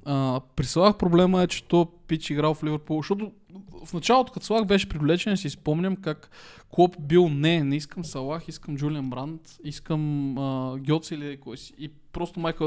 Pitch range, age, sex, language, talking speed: 140-175 Hz, 20-39, male, Bulgarian, 180 wpm